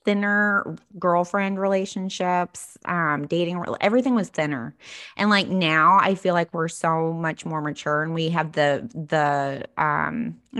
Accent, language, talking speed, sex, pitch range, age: American, English, 140 wpm, female, 160-215 Hz, 20-39